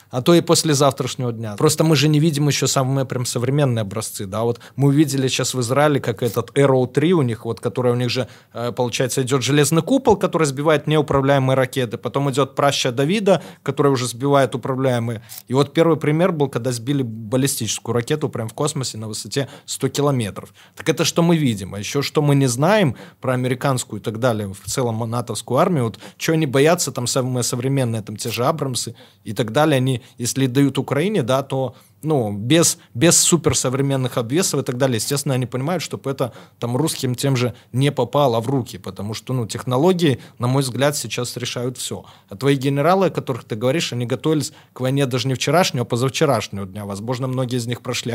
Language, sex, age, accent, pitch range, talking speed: Russian, male, 20-39, native, 120-145 Hz, 195 wpm